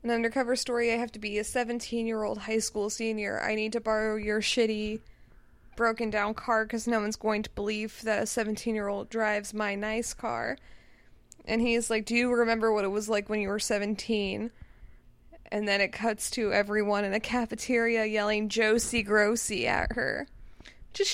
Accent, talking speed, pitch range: American, 175 wpm, 215-240 Hz